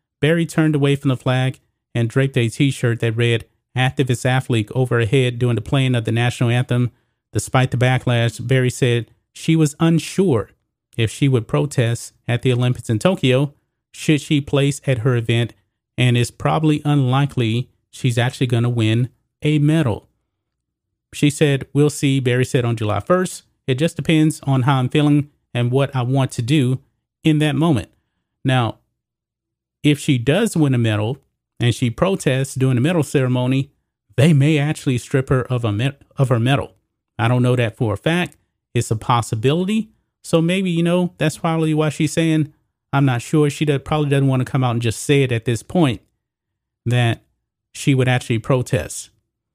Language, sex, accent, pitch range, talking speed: English, male, American, 120-150 Hz, 180 wpm